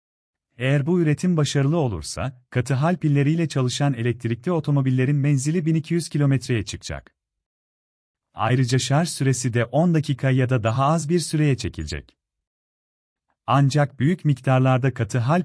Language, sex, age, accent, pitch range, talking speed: Turkish, male, 40-59, native, 90-155 Hz, 130 wpm